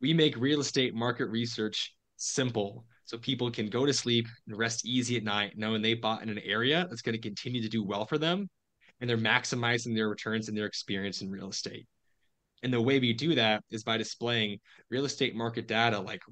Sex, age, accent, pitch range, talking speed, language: male, 20-39, American, 115-135 Hz, 215 wpm, English